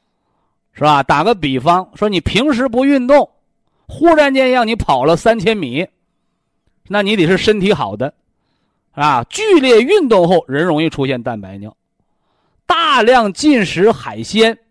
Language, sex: Chinese, male